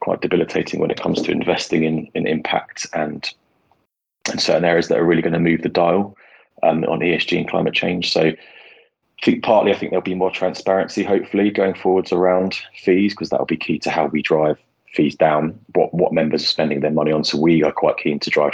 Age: 20-39